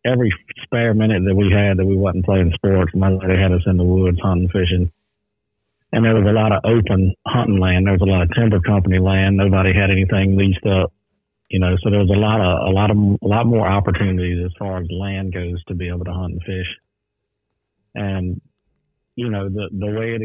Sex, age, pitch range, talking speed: male, 40-59, 95-105 Hz, 230 wpm